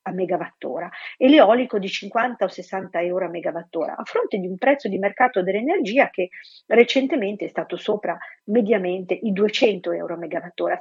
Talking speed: 165 wpm